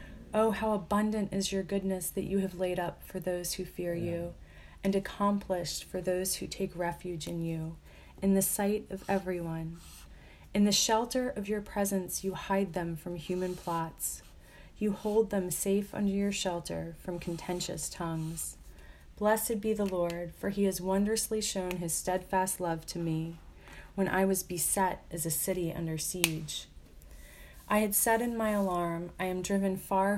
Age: 30-49